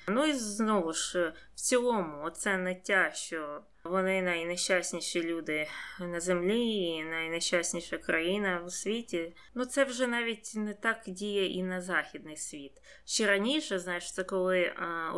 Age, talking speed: 20-39, 140 wpm